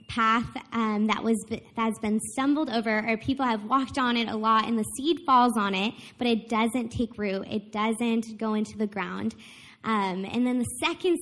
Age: 10-29